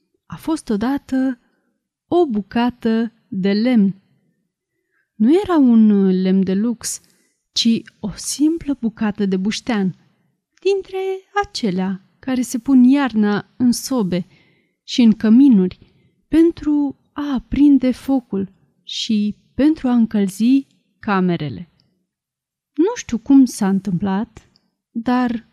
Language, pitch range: Romanian, 195-275 Hz